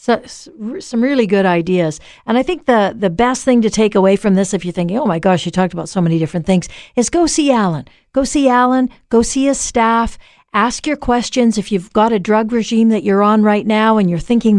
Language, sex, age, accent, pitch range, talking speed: English, female, 50-69, American, 185-235 Hz, 240 wpm